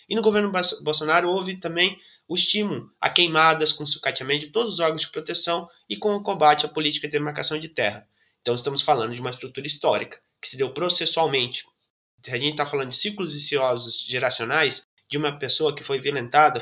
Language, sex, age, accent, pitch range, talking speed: Portuguese, male, 20-39, Brazilian, 140-170 Hz, 195 wpm